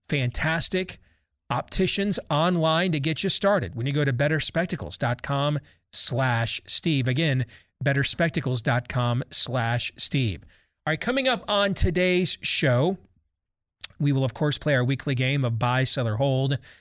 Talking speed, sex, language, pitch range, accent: 150 wpm, male, English, 120-160 Hz, American